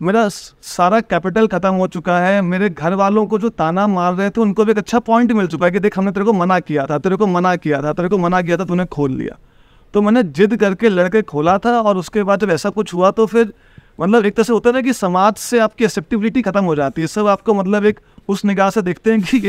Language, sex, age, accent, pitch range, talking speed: English, male, 30-49, Indian, 175-225 Hz, 190 wpm